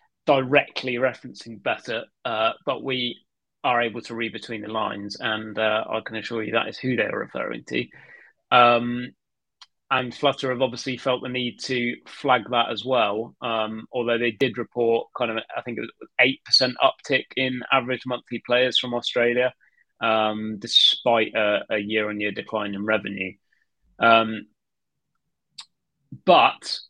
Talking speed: 150 wpm